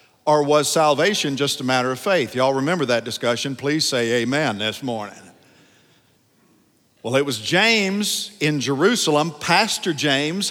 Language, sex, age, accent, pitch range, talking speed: English, male, 50-69, American, 130-190 Hz, 145 wpm